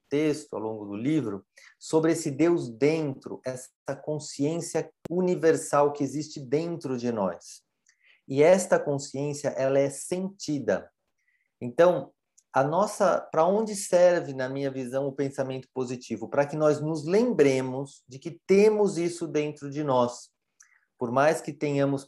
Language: Portuguese